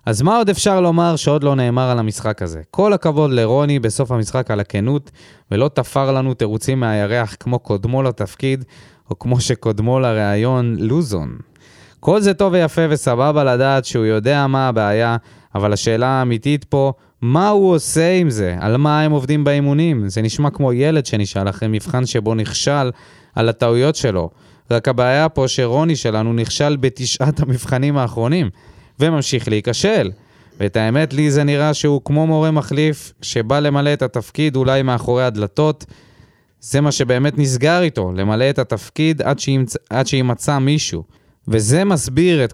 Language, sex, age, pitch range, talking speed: Hebrew, male, 20-39, 110-145 Hz, 155 wpm